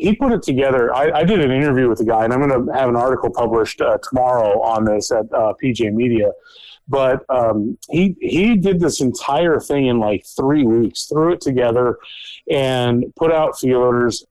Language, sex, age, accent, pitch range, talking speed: English, male, 40-59, American, 120-145 Hz, 195 wpm